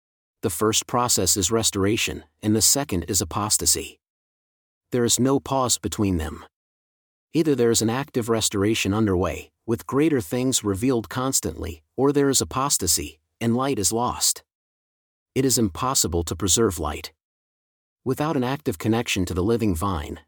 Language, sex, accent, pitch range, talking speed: English, male, American, 95-130 Hz, 150 wpm